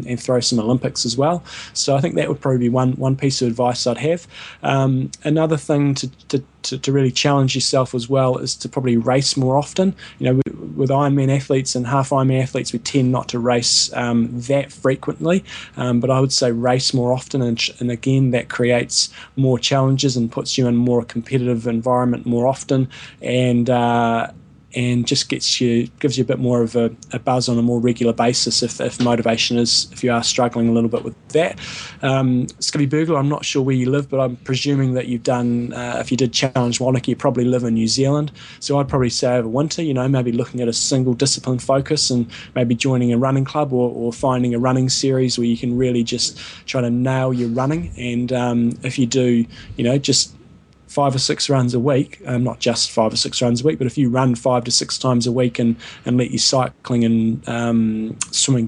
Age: 20-39